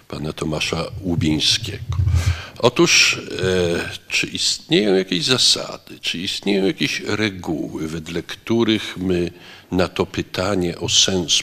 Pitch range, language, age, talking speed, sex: 90-120 Hz, Polish, 50-69, 110 wpm, male